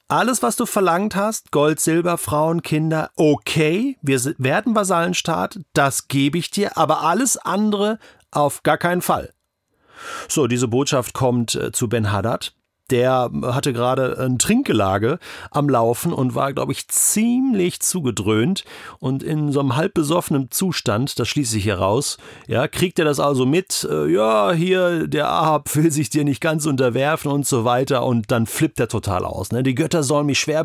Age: 40-59